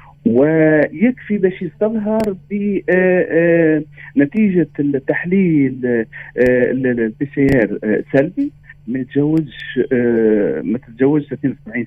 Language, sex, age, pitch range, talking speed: Arabic, male, 40-59, 130-185 Hz, 70 wpm